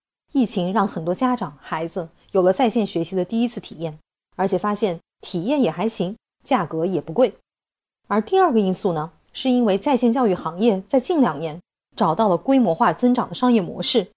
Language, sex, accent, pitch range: Chinese, female, native, 175-240 Hz